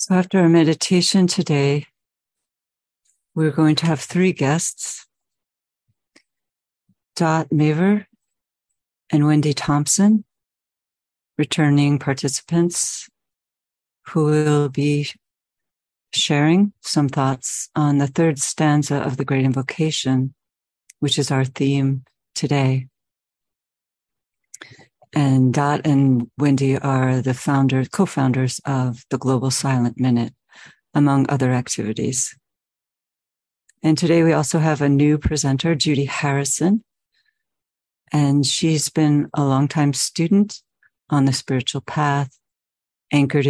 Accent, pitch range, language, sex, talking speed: American, 135-155 Hz, English, female, 100 wpm